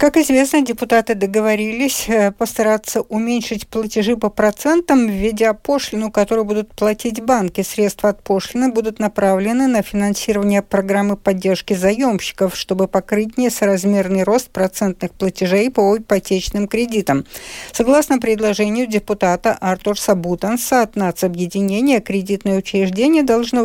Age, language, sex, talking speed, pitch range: 60-79, Russian, female, 110 wpm, 200-235 Hz